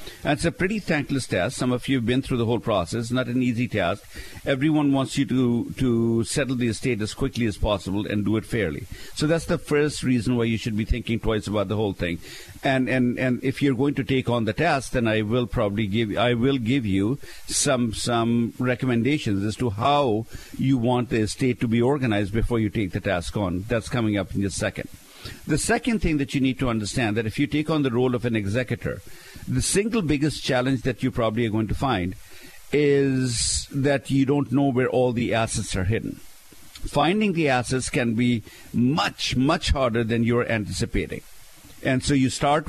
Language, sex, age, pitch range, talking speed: English, male, 50-69, 110-135 Hz, 210 wpm